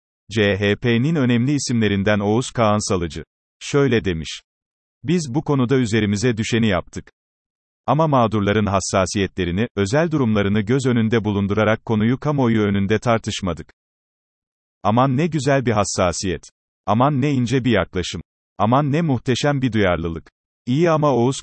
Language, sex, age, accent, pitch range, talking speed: Turkish, male, 40-59, native, 100-130 Hz, 125 wpm